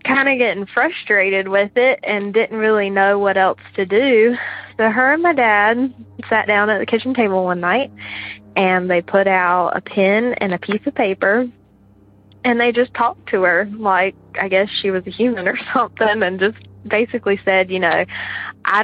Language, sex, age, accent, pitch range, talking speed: English, female, 20-39, American, 190-240 Hz, 190 wpm